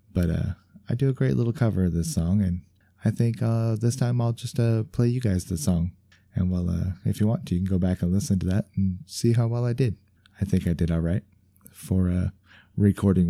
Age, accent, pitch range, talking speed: 20-39, American, 90-105 Hz, 245 wpm